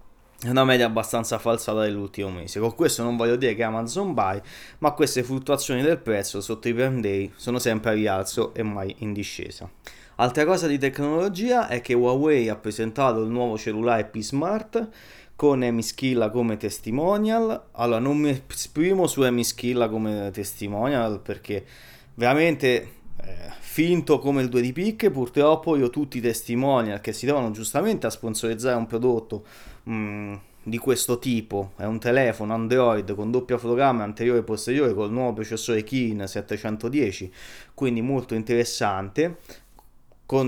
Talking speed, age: 150 wpm, 20-39